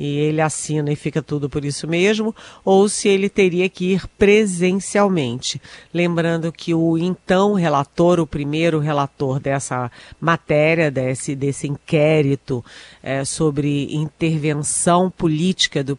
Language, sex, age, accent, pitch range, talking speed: Portuguese, female, 40-59, Brazilian, 150-195 Hz, 130 wpm